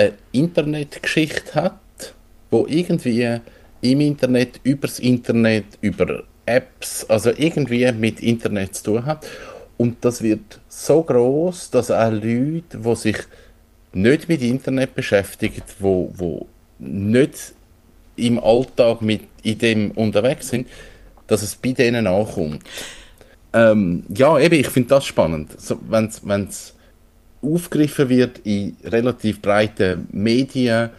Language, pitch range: German, 100-125 Hz